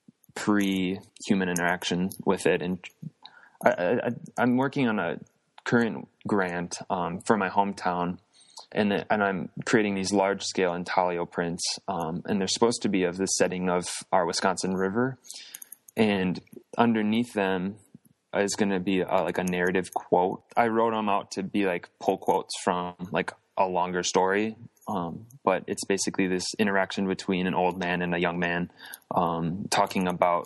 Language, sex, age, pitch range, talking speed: English, male, 20-39, 90-100 Hz, 165 wpm